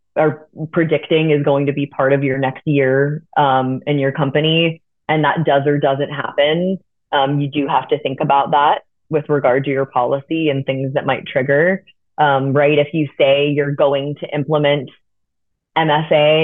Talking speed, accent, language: 180 wpm, American, English